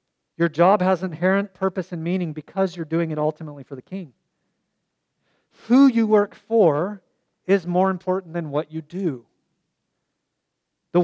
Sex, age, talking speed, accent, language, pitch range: male, 40-59, 145 wpm, American, English, 155-190 Hz